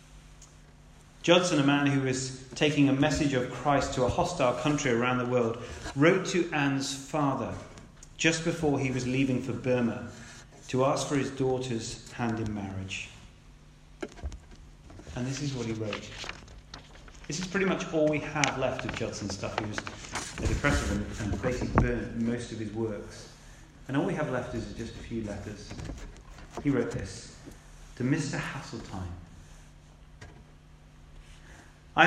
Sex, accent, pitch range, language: male, British, 105-145 Hz, English